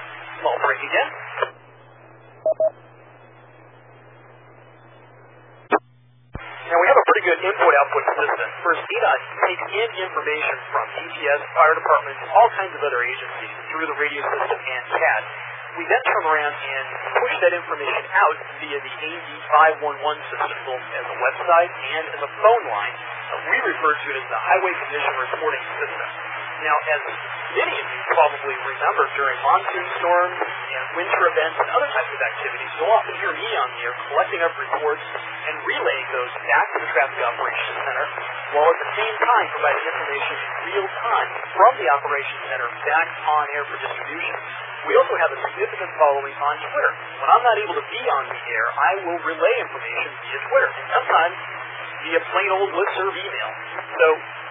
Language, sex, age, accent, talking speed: English, male, 40-59, American, 165 wpm